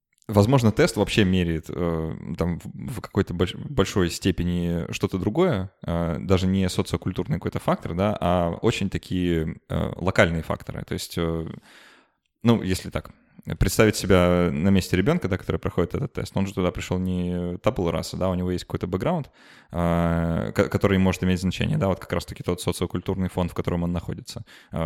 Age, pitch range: 20-39, 85-100 Hz